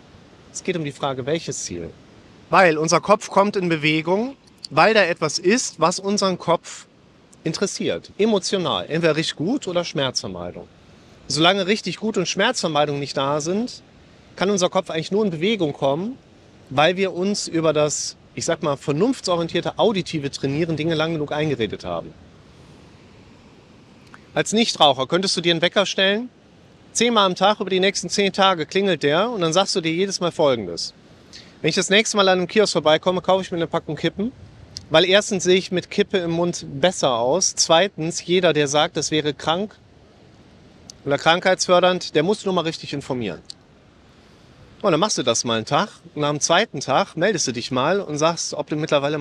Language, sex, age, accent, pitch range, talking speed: German, male, 40-59, German, 145-190 Hz, 180 wpm